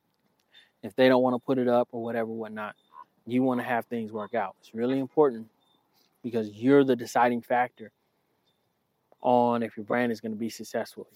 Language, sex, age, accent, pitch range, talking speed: English, male, 20-39, American, 120-140 Hz, 190 wpm